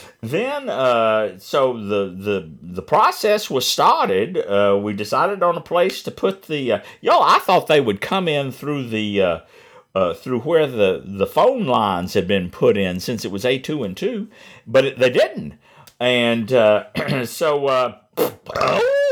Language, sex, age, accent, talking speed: English, male, 60-79, American, 175 wpm